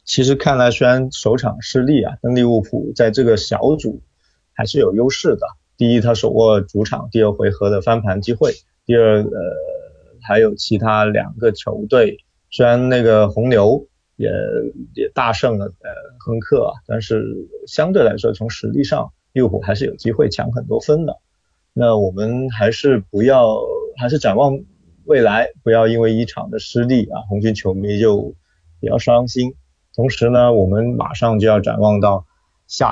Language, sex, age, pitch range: Chinese, male, 30-49, 105-125 Hz